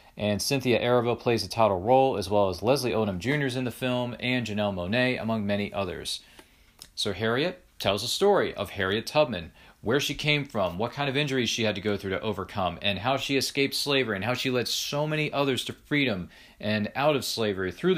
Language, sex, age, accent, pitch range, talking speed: English, male, 40-59, American, 100-135 Hz, 215 wpm